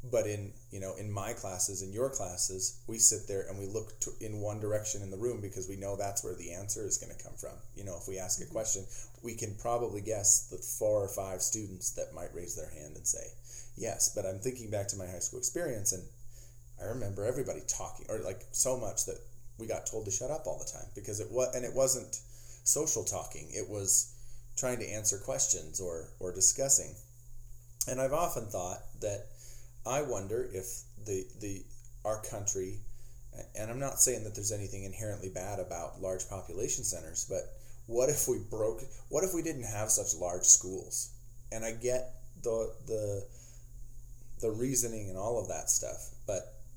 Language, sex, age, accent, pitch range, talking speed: English, male, 30-49, American, 100-120 Hz, 200 wpm